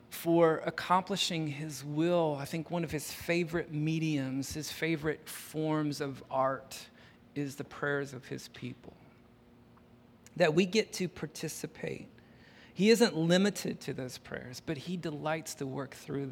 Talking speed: 145 wpm